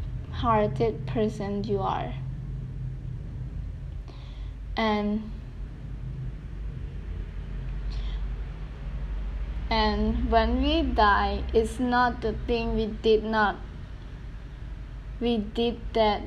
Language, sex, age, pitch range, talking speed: English, female, 10-29, 210-235 Hz, 70 wpm